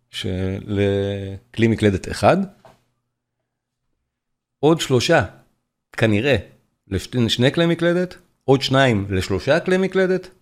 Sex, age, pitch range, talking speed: male, 40-59, 110-160 Hz, 80 wpm